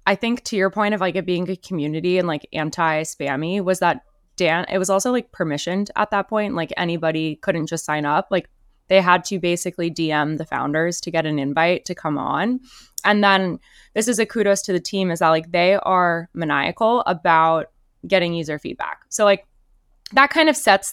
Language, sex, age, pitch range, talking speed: English, female, 20-39, 165-200 Hz, 205 wpm